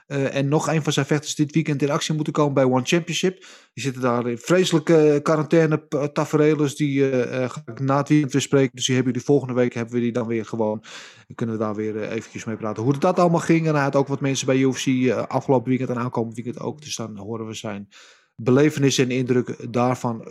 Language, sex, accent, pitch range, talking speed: Dutch, male, Dutch, 125-165 Hz, 240 wpm